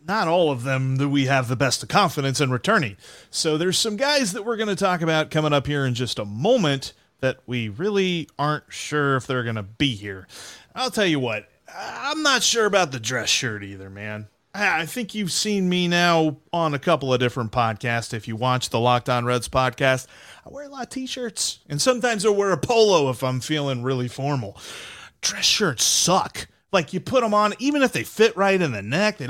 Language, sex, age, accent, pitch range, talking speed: English, male, 30-49, American, 125-195 Hz, 220 wpm